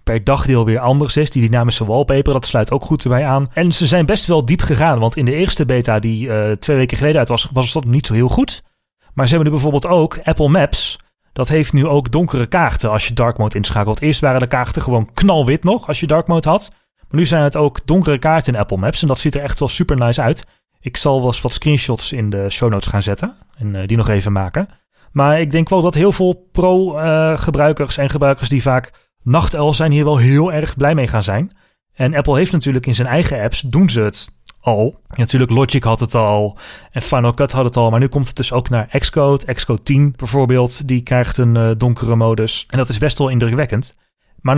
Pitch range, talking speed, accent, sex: 120-150 Hz, 240 wpm, Dutch, male